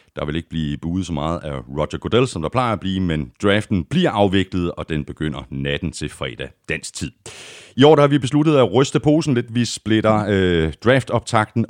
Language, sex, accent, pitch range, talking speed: Danish, male, native, 85-125 Hz, 200 wpm